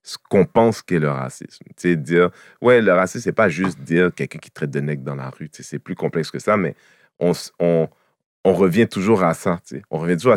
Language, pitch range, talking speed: French, 75-95 Hz, 235 wpm